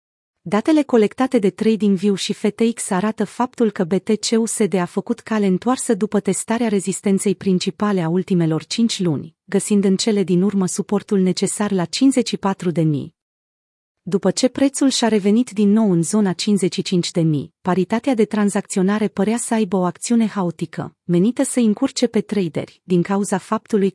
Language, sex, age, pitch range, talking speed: Romanian, female, 30-49, 185-225 Hz, 145 wpm